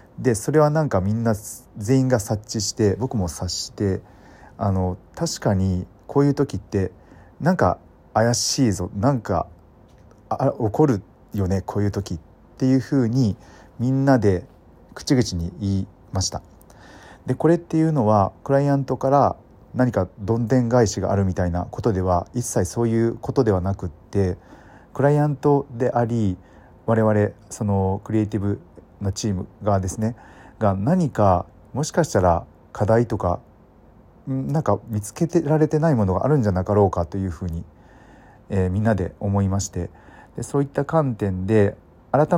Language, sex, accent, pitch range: Japanese, male, native, 95-130 Hz